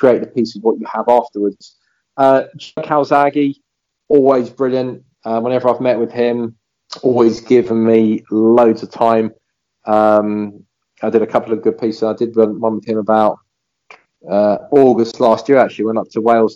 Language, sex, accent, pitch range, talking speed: English, male, British, 105-125 Hz, 170 wpm